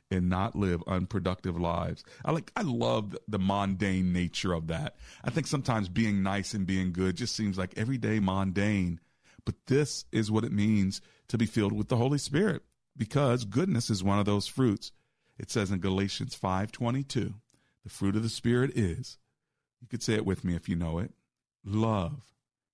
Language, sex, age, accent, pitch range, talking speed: English, male, 40-59, American, 95-125 Hz, 180 wpm